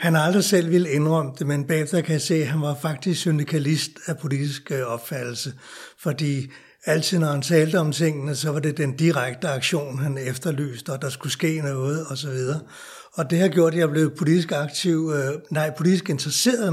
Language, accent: Danish, native